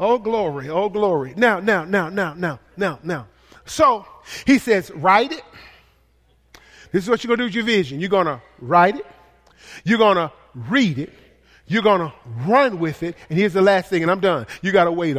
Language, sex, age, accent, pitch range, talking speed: English, male, 40-59, American, 170-245 Hz, 215 wpm